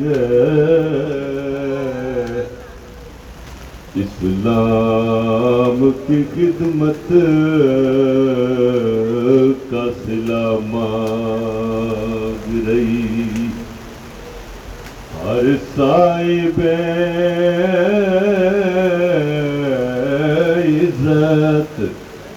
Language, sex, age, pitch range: Urdu, male, 50-69, 115-155 Hz